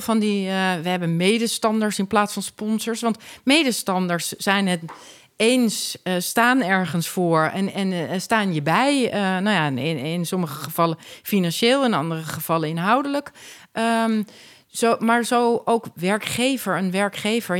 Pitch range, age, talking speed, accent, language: 165-215 Hz, 40-59, 155 wpm, Dutch, Dutch